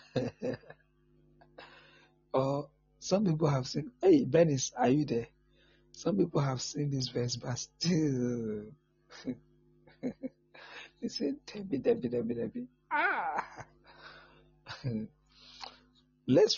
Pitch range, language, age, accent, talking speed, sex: 125-150 Hz, English, 60-79, Nigerian, 95 wpm, male